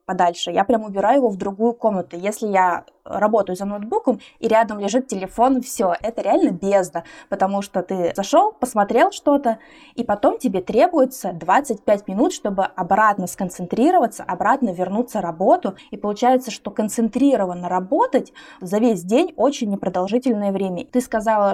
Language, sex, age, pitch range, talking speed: Russian, female, 20-39, 195-250 Hz, 145 wpm